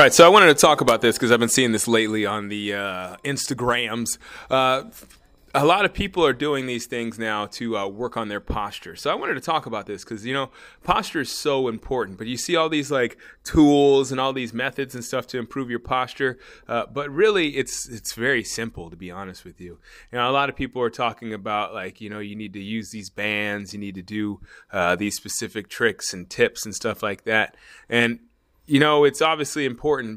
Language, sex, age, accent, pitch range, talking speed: English, male, 20-39, American, 105-130 Hz, 230 wpm